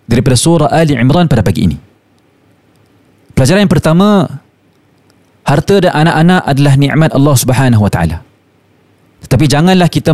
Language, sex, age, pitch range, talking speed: Malay, male, 30-49, 130-170 Hz, 130 wpm